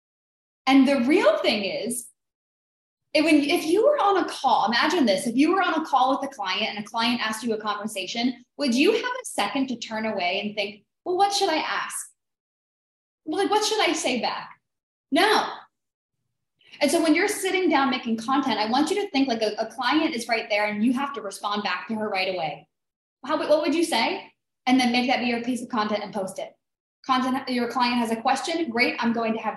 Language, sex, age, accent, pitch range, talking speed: English, female, 20-39, American, 220-290 Hz, 220 wpm